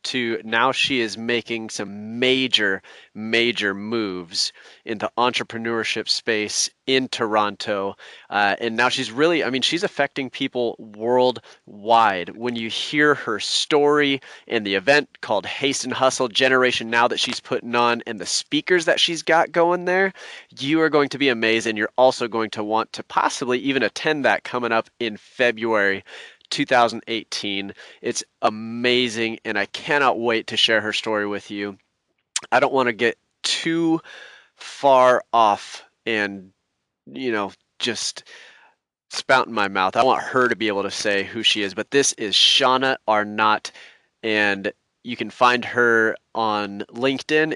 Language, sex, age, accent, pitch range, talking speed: English, male, 30-49, American, 110-130 Hz, 160 wpm